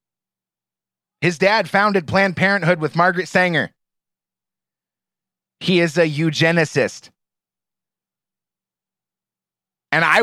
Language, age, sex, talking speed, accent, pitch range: English, 30-49, male, 80 wpm, American, 130-170 Hz